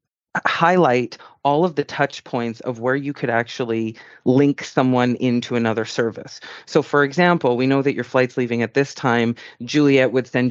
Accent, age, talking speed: American, 30-49, 175 wpm